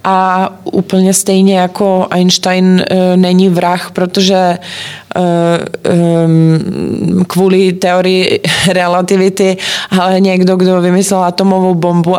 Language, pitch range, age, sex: Czech, 175-195 Hz, 20-39, female